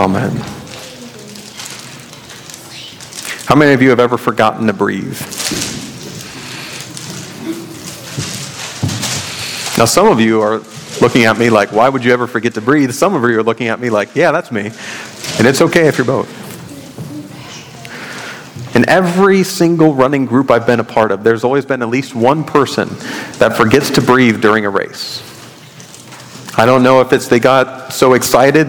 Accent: American